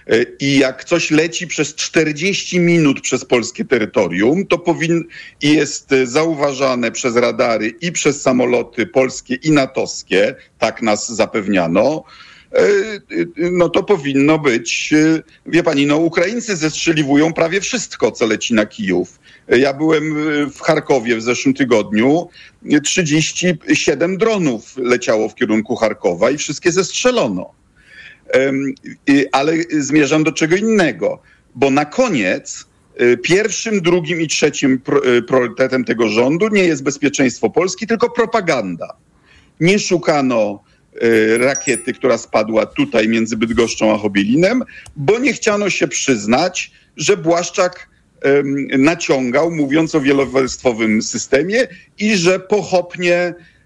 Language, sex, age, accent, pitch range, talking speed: Polish, male, 50-69, native, 135-175 Hz, 115 wpm